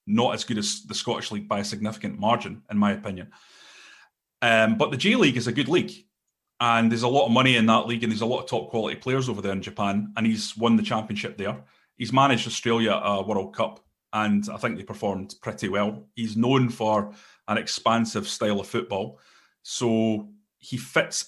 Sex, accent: male, British